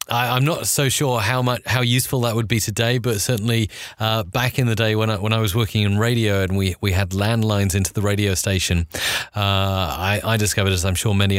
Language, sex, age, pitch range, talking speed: English, male, 30-49, 105-125 Hz, 235 wpm